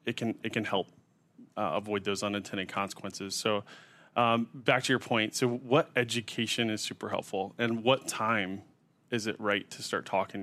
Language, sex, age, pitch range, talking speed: English, male, 20-39, 105-120 Hz, 180 wpm